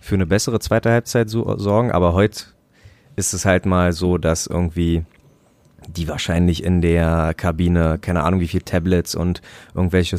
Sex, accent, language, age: male, German, German, 30-49